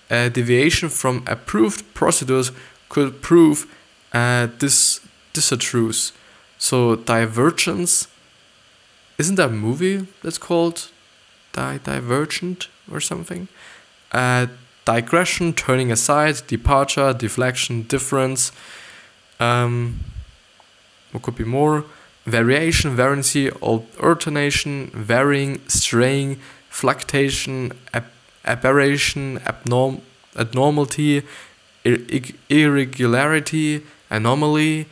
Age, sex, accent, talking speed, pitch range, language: 10-29, male, German, 80 wpm, 120-150 Hz, English